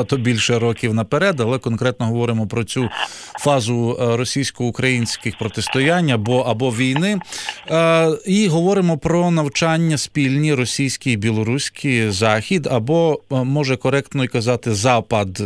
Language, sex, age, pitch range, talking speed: English, male, 40-59, 120-155 Hz, 115 wpm